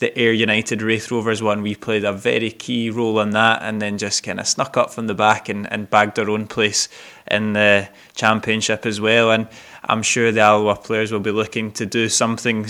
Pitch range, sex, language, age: 105-115 Hz, male, English, 20-39